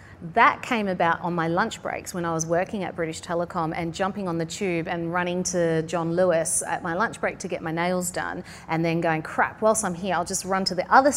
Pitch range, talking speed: 165-210 Hz, 245 wpm